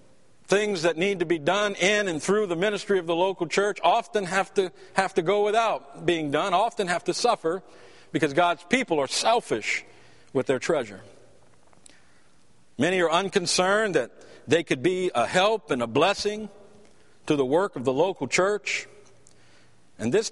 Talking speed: 165 wpm